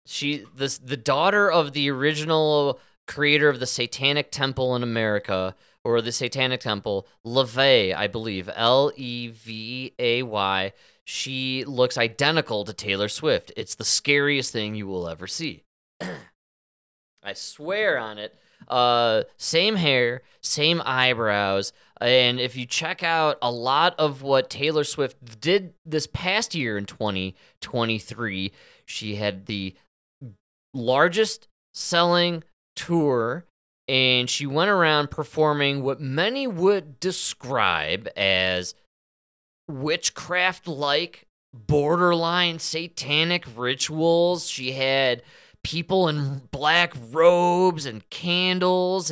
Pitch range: 120-170 Hz